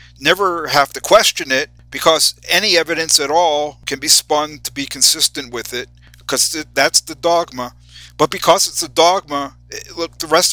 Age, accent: 50-69, American